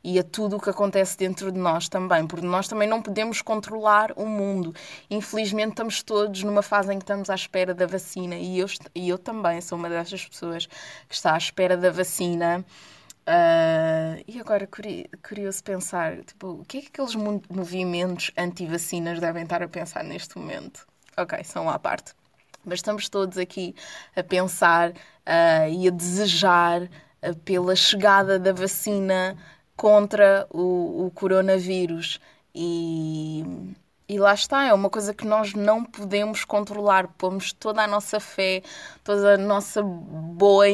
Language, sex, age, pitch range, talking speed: Portuguese, female, 20-39, 175-205 Hz, 150 wpm